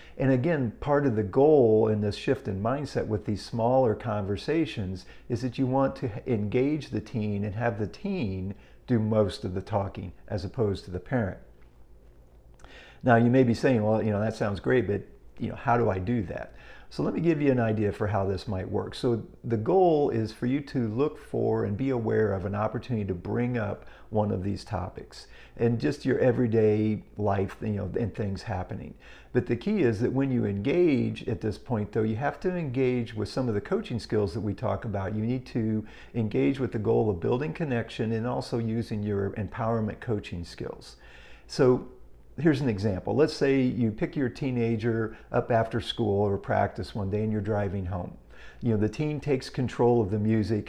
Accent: American